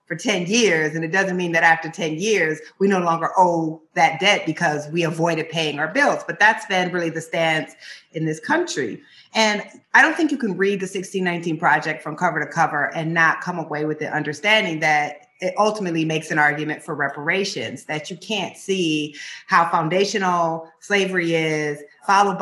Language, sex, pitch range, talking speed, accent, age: English, female, 150-185 Hz, 185 wpm, American, 30-49